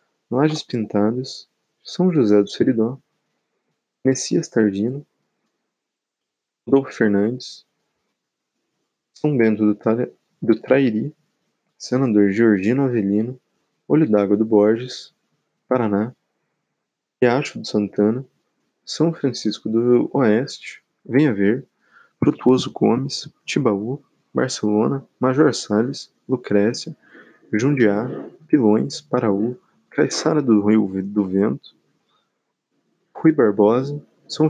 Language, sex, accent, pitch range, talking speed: Portuguese, male, Brazilian, 105-135 Hz, 90 wpm